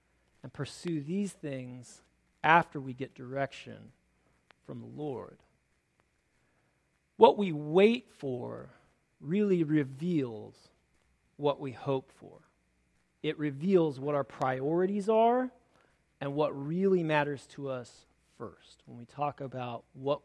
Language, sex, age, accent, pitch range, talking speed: English, male, 40-59, American, 130-180 Hz, 115 wpm